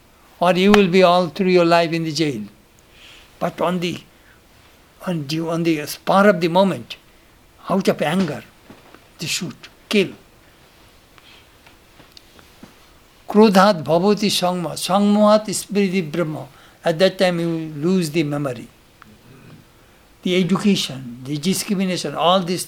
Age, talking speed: 60-79, 120 wpm